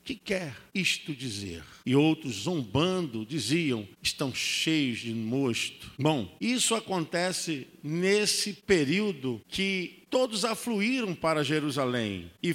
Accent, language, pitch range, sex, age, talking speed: Brazilian, Portuguese, 165-215 Hz, male, 50-69, 115 wpm